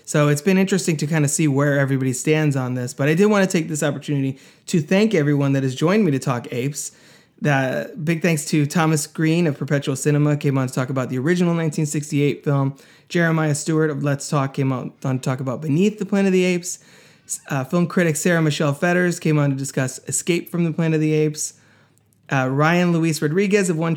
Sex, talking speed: male, 220 wpm